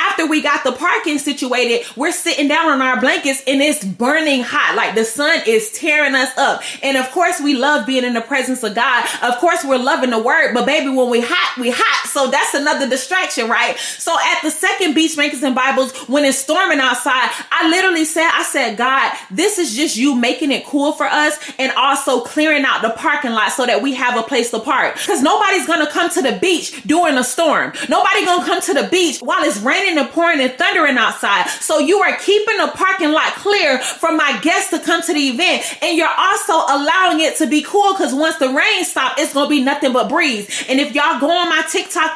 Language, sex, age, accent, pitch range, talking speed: English, female, 20-39, American, 265-335 Hz, 230 wpm